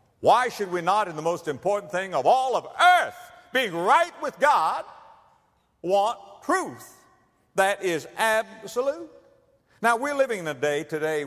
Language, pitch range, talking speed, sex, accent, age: English, 130-205 Hz, 155 wpm, male, American, 60-79